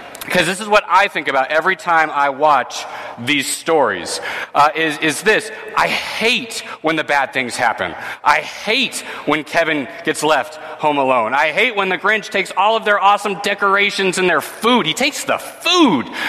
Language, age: English, 30-49